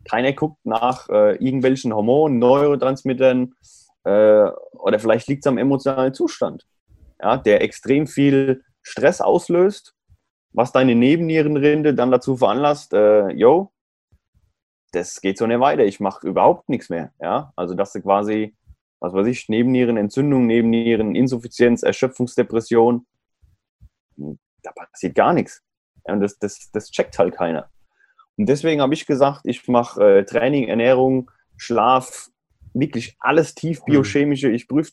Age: 30-49